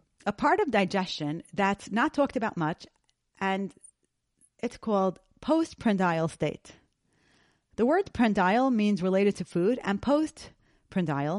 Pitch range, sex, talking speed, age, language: 175-245 Hz, female, 120 wpm, 30-49, English